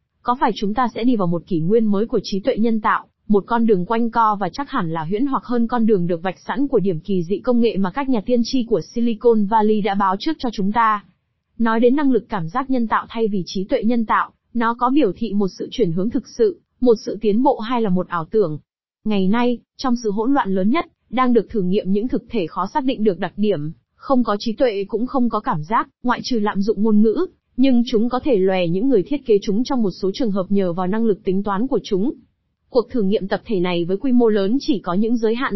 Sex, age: female, 20-39